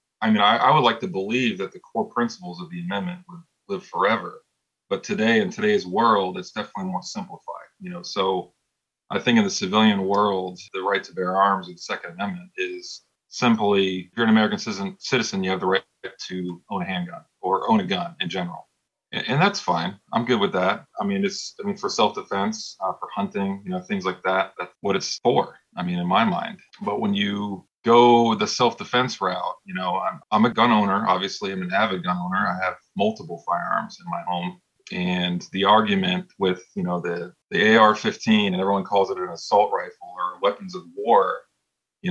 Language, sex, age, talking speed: English, male, 30-49, 205 wpm